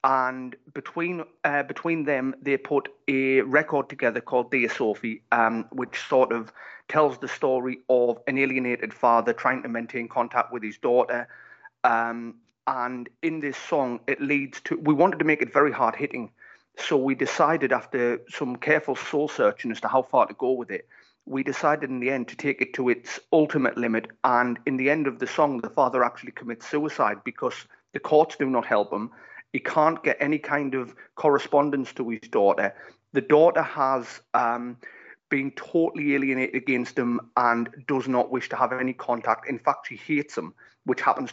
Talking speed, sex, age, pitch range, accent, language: 185 wpm, male, 30-49, 120-145 Hz, British, English